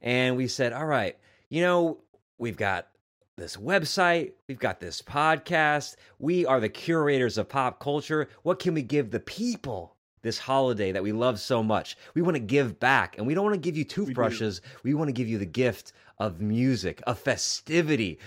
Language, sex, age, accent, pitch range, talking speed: English, male, 30-49, American, 110-155 Hz, 195 wpm